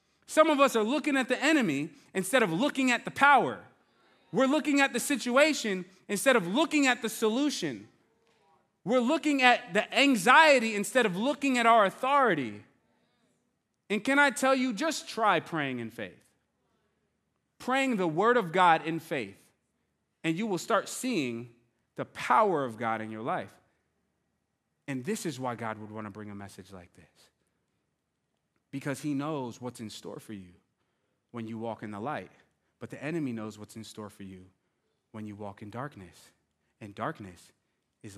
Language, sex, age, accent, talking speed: English, male, 30-49, American, 170 wpm